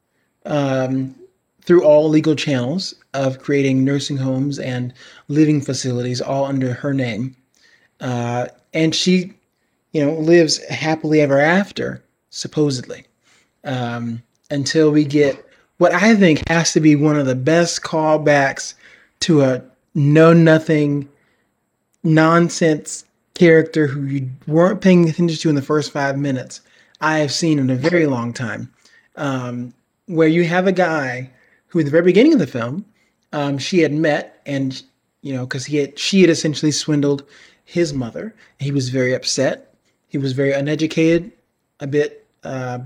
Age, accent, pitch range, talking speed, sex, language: 30-49, American, 135-165 Hz, 150 wpm, male, English